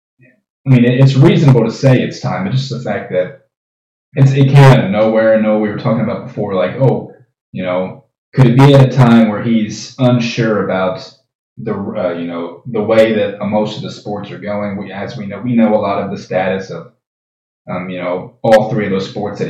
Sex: male